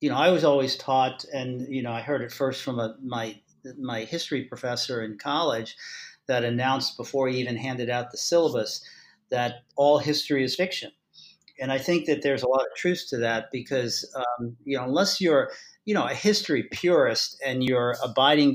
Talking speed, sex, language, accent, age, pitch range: 190 wpm, male, English, American, 50-69, 120-155 Hz